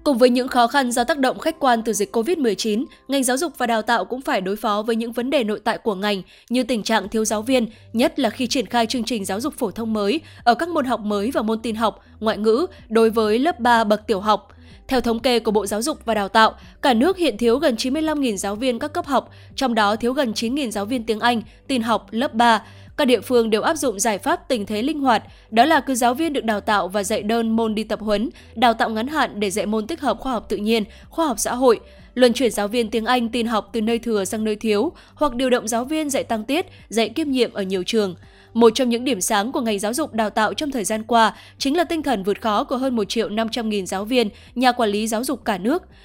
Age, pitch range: 10-29, 215-260 Hz